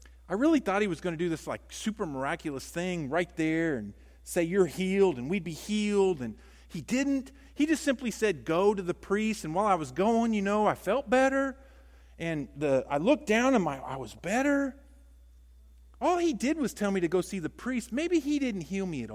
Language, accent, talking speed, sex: English, American, 225 wpm, male